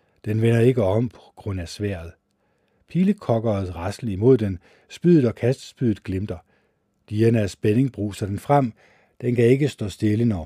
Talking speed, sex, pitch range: 155 wpm, male, 95-125 Hz